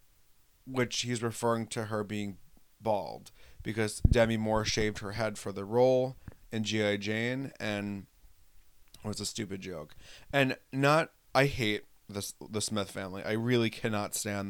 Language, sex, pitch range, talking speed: English, male, 105-125 Hz, 155 wpm